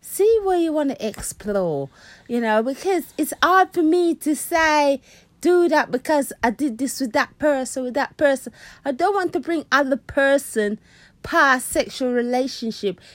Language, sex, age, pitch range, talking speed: English, female, 30-49, 220-300 Hz, 170 wpm